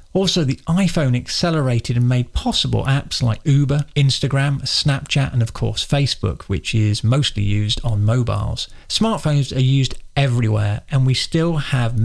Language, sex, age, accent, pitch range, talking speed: English, male, 40-59, British, 115-145 Hz, 150 wpm